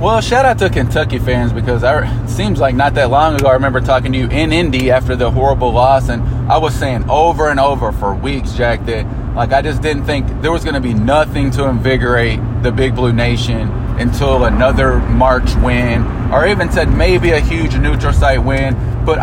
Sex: male